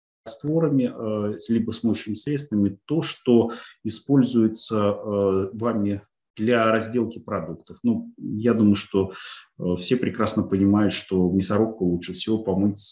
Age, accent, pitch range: 30-49, native, 95-115 Hz